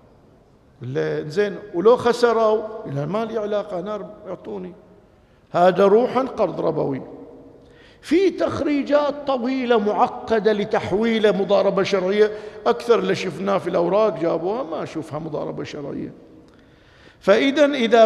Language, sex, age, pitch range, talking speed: Arabic, male, 50-69, 195-250 Hz, 105 wpm